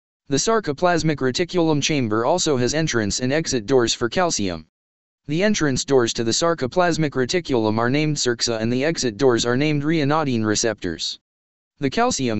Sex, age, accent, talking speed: male, 20-39, American, 155 wpm